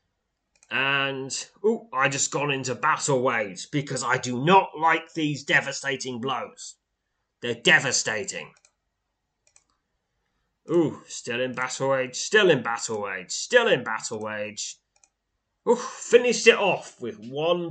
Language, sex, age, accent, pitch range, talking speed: English, male, 20-39, British, 110-160 Hz, 125 wpm